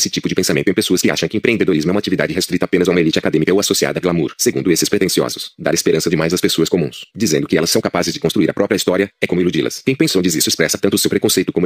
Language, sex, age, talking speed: Portuguese, male, 30-49, 285 wpm